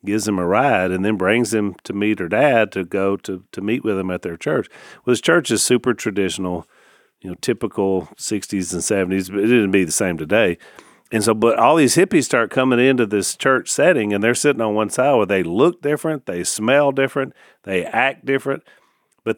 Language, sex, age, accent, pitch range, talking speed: English, male, 40-59, American, 100-135 Hz, 215 wpm